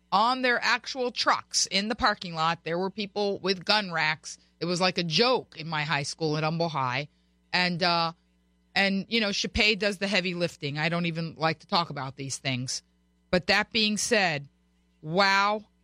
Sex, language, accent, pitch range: female, English, American, 155-205 Hz